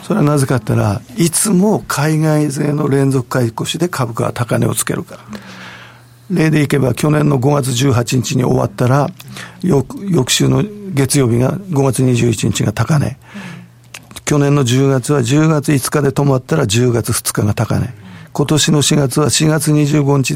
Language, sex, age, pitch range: Japanese, male, 50-69, 120-155 Hz